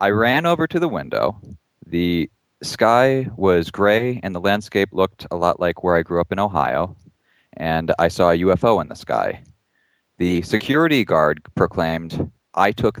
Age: 30-49